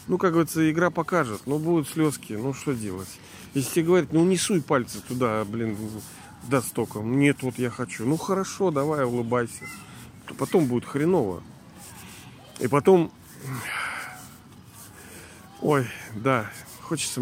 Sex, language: male, Russian